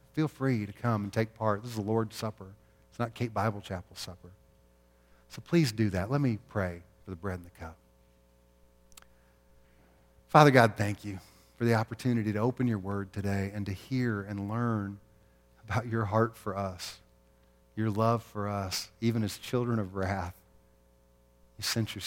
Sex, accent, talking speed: male, American, 175 wpm